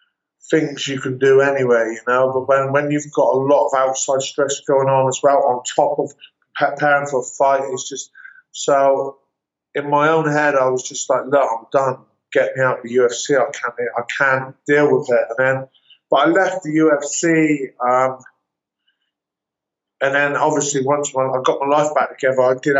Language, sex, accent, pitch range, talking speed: English, male, British, 125-145 Hz, 205 wpm